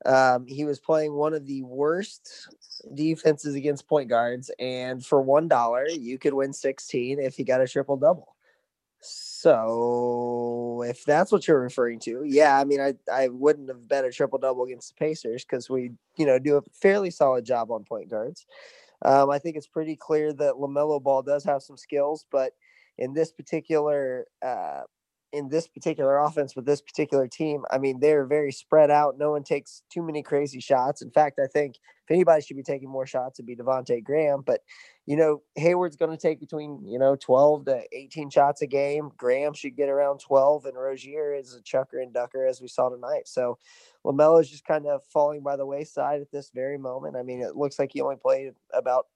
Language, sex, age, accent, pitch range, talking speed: English, male, 20-39, American, 130-150 Hz, 205 wpm